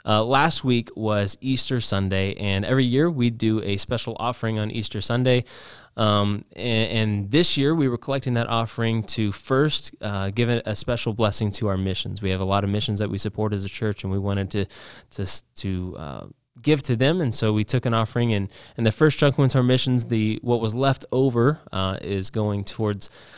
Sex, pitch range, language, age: male, 100-125 Hz, English, 20-39